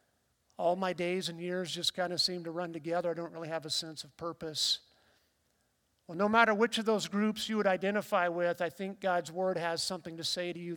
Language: English